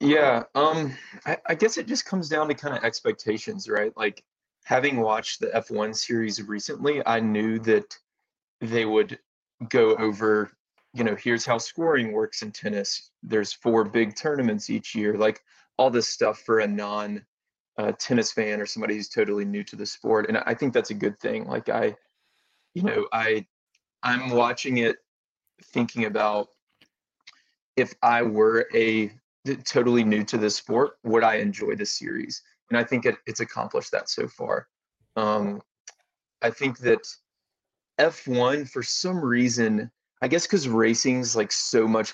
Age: 30-49